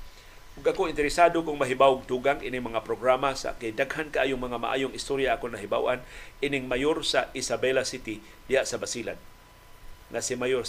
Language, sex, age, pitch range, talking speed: Filipino, male, 50-69, 140-220 Hz, 155 wpm